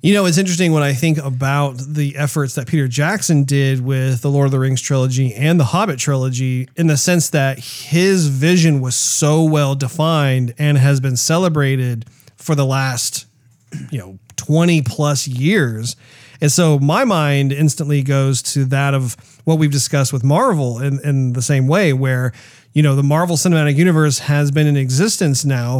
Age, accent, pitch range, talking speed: 40-59, American, 130-155 Hz, 175 wpm